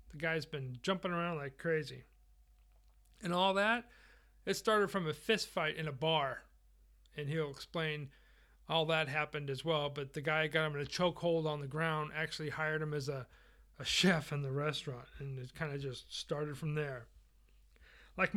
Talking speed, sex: 185 wpm, male